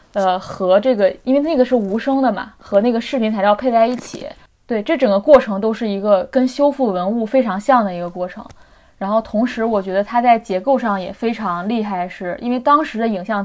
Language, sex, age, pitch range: Chinese, female, 20-39, 195-240 Hz